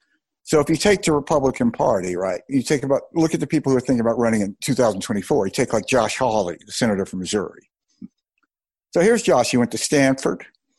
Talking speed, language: 215 wpm, English